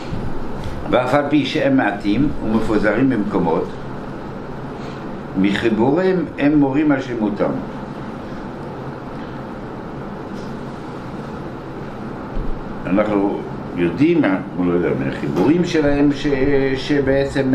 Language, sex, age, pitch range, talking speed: Hebrew, male, 60-79, 100-135 Hz, 80 wpm